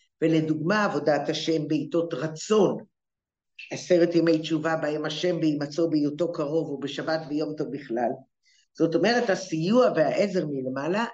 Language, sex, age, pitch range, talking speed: English, female, 50-69, 155-220 Hz, 120 wpm